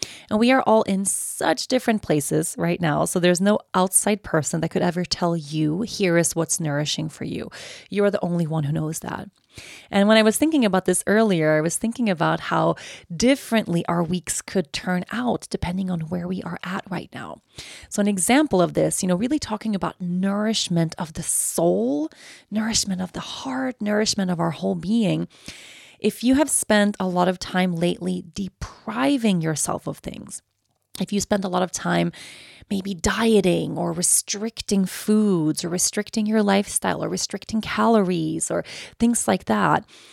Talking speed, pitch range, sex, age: 180 wpm, 175-220 Hz, female, 30-49